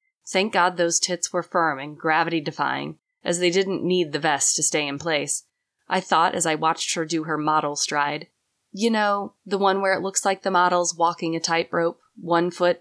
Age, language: 20-39, English